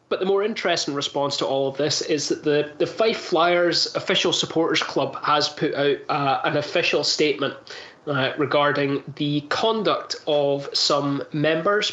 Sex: male